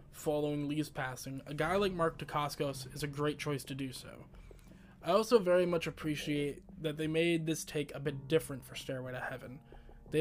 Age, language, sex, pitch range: 20-39, English, male, 135-160 Hz